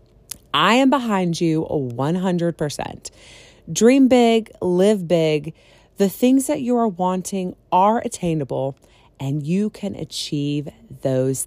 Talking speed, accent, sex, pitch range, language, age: 115 wpm, American, female, 160-240 Hz, English, 30-49